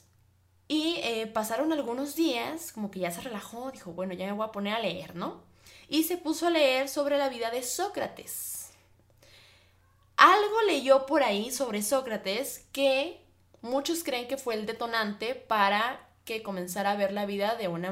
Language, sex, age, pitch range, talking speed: Spanish, female, 20-39, 180-240 Hz, 175 wpm